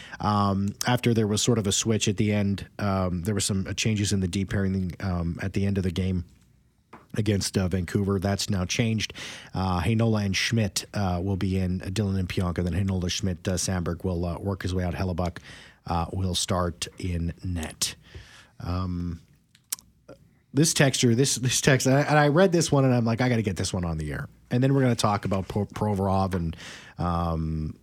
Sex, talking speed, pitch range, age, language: male, 210 wpm, 95-130 Hz, 30-49, English